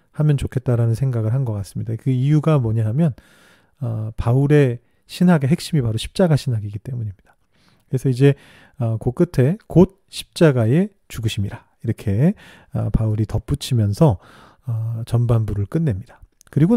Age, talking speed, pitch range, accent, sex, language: 40-59, 120 wpm, 115-165 Hz, Korean, male, English